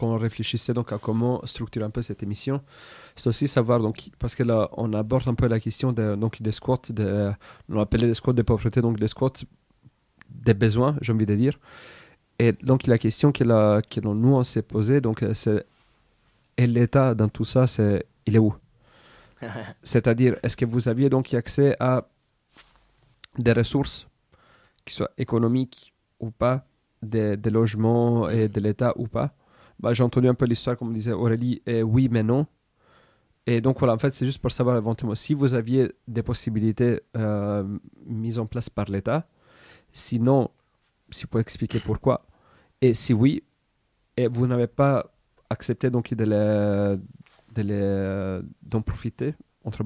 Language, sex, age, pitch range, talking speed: French, male, 30-49, 110-125 Hz, 180 wpm